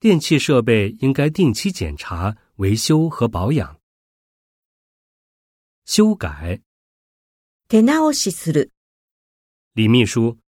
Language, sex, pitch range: Japanese, male, 95-155 Hz